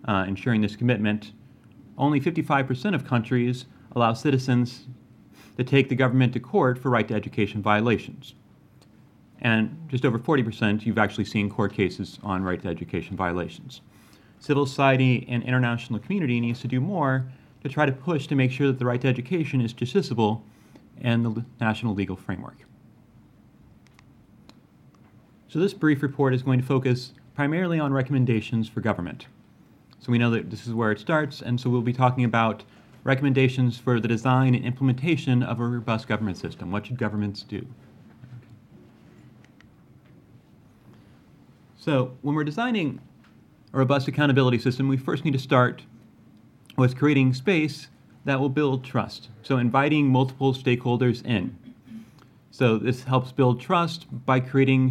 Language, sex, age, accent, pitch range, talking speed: English, male, 30-49, American, 115-135 Hz, 150 wpm